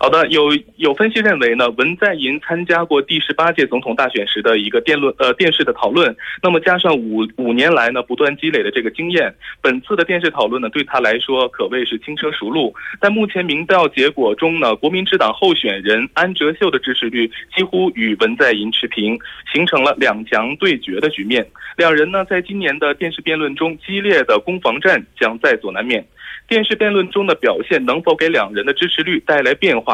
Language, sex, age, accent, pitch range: Korean, male, 20-39, Chinese, 145-200 Hz